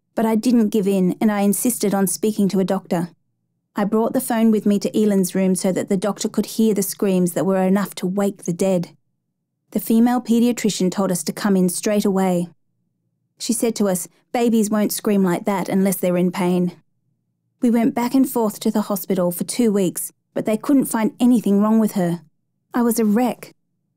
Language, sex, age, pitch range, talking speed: English, female, 30-49, 185-225 Hz, 210 wpm